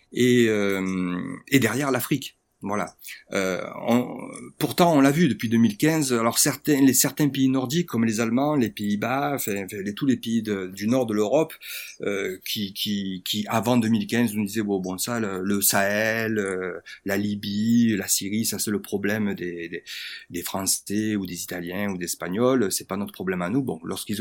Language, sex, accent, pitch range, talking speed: French, male, French, 95-120 Hz, 190 wpm